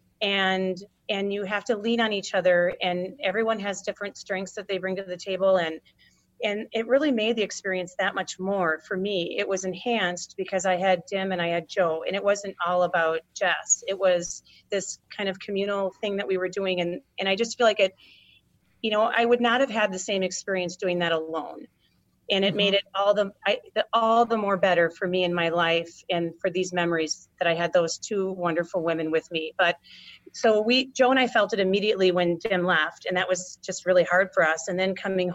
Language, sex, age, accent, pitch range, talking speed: English, female, 30-49, American, 180-210 Hz, 225 wpm